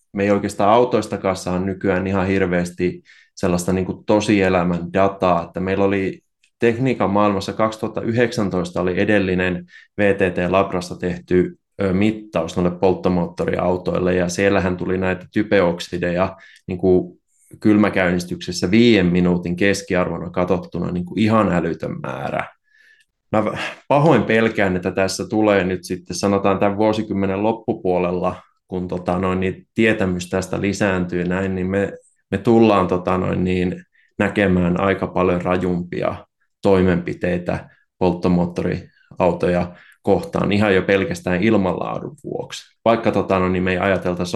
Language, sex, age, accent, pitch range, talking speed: Finnish, male, 20-39, native, 90-100 Hz, 105 wpm